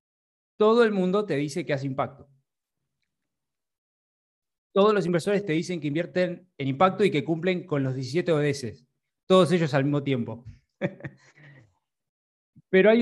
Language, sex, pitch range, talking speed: Spanish, male, 135-180 Hz, 145 wpm